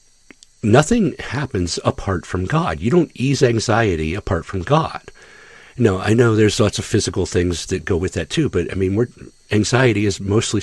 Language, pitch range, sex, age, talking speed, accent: English, 100-130 Hz, male, 50-69, 175 wpm, American